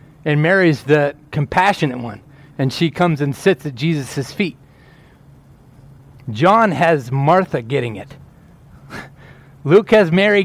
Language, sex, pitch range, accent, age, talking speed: English, male, 135-170 Hz, American, 30-49, 120 wpm